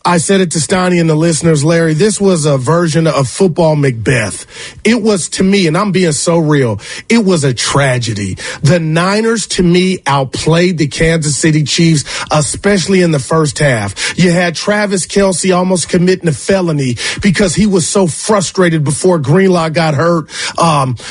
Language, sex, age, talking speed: English, male, 30-49, 175 wpm